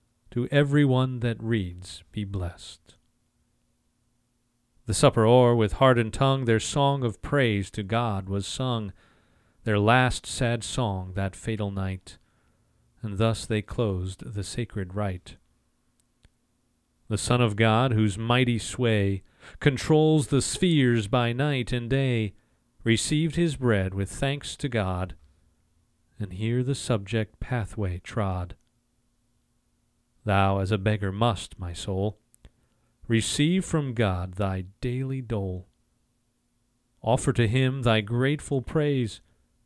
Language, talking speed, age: English, 125 wpm, 40-59